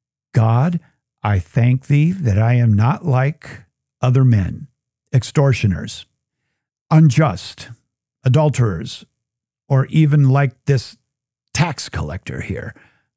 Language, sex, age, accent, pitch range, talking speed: English, male, 50-69, American, 110-140 Hz, 95 wpm